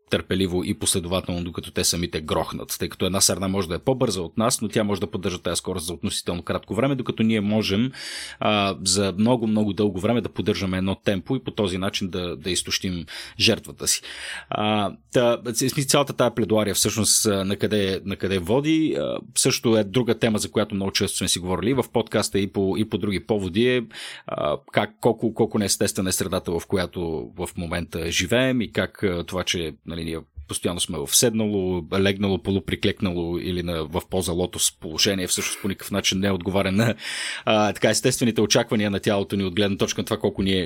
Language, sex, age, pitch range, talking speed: Bulgarian, male, 30-49, 95-115 Hz, 190 wpm